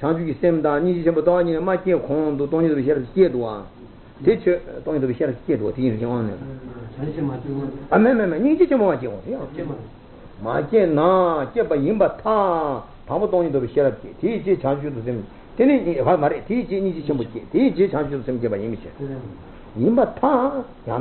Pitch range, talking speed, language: 140-210 Hz, 35 wpm, Italian